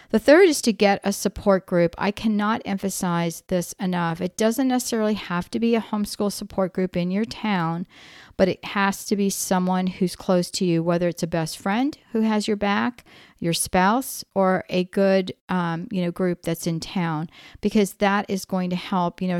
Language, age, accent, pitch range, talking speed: English, 40-59, American, 175-205 Hz, 200 wpm